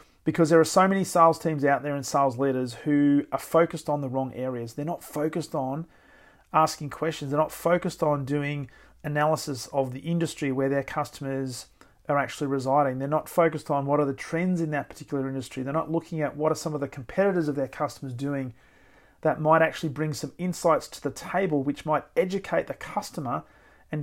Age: 40-59